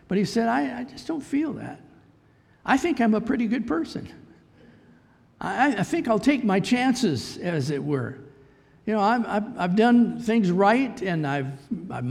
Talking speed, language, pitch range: 180 wpm, English, 140-210 Hz